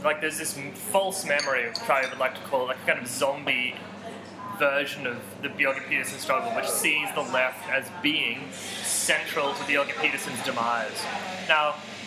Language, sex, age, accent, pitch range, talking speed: English, male, 20-39, Australian, 145-185 Hz, 170 wpm